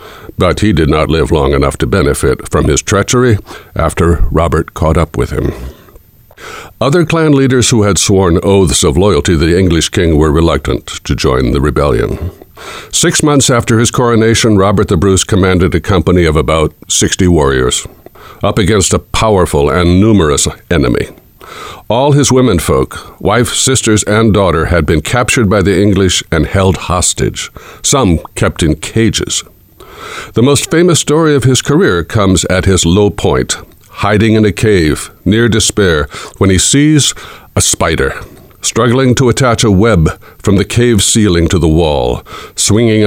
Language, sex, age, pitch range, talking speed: English, male, 60-79, 85-115 Hz, 160 wpm